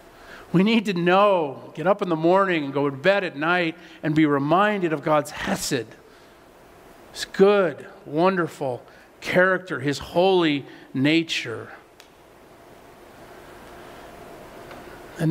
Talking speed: 115 wpm